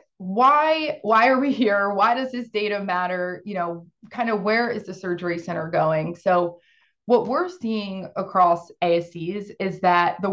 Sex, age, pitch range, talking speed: female, 20-39, 175-220 Hz, 175 wpm